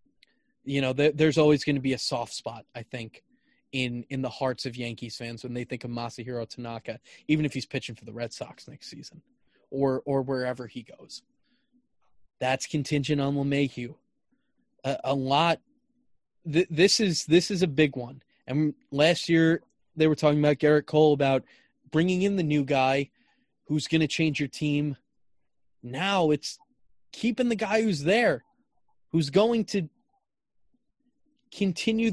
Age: 20-39